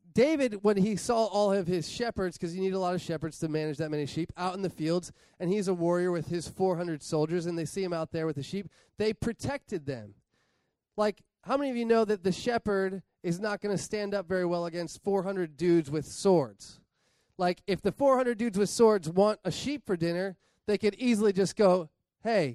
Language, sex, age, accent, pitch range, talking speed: English, male, 20-39, American, 175-215 Hz, 225 wpm